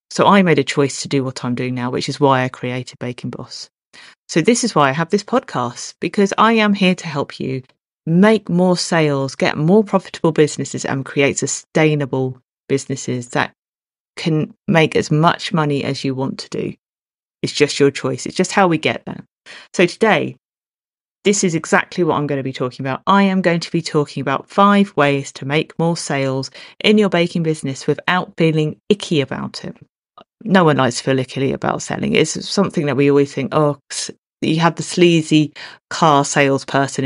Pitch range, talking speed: 135-180 Hz, 190 wpm